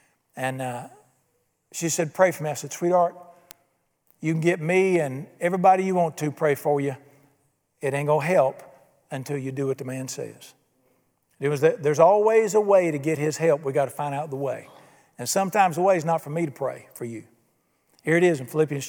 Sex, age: male, 50-69